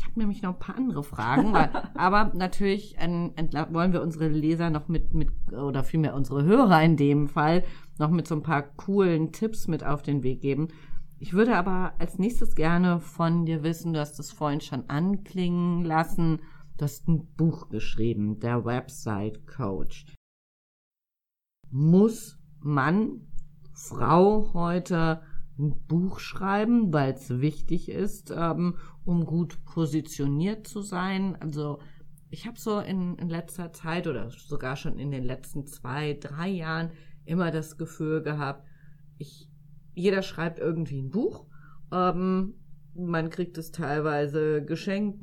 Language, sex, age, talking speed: German, female, 40-59, 145 wpm